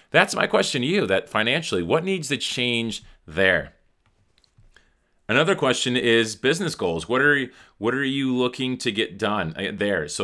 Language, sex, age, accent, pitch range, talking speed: English, male, 30-49, American, 105-145 Hz, 165 wpm